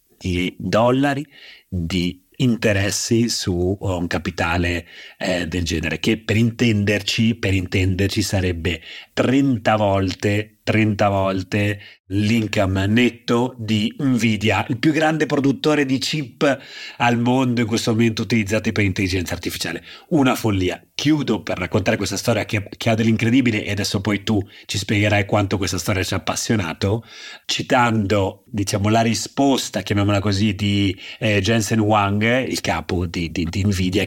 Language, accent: Italian, native